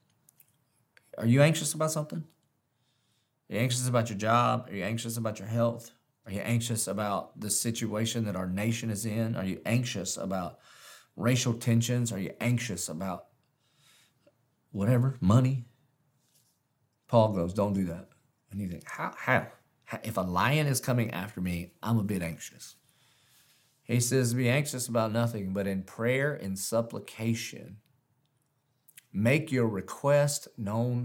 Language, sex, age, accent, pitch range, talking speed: English, male, 40-59, American, 105-130 Hz, 145 wpm